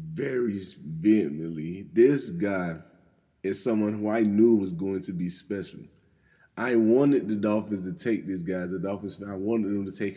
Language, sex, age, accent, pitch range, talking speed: English, male, 20-39, American, 100-125 Hz, 185 wpm